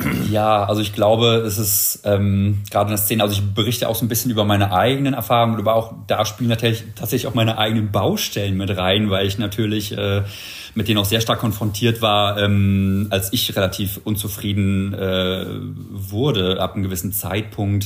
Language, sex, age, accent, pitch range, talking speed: German, male, 30-49, German, 100-115 Hz, 185 wpm